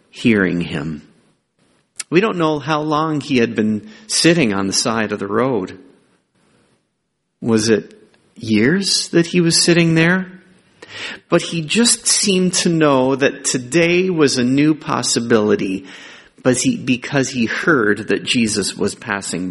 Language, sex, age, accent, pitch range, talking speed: English, male, 40-59, American, 125-170 Hz, 135 wpm